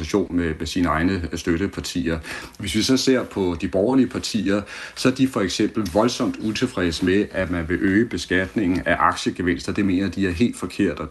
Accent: native